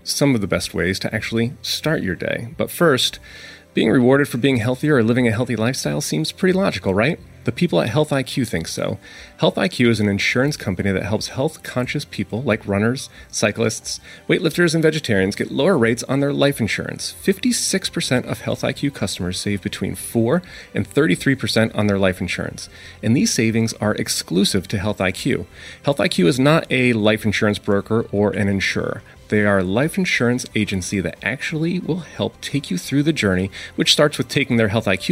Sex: male